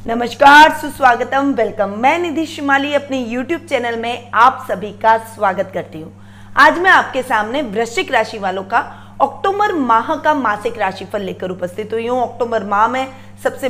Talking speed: 160 wpm